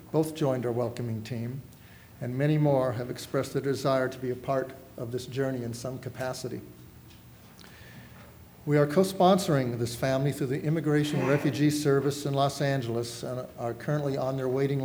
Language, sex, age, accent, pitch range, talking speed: English, male, 50-69, American, 125-150 Hz, 165 wpm